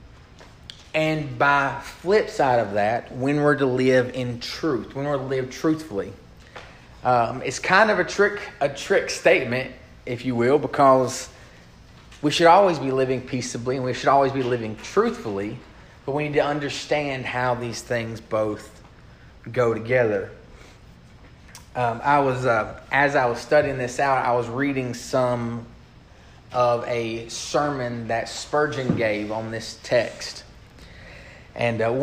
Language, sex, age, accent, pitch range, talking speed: English, male, 30-49, American, 120-145 Hz, 150 wpm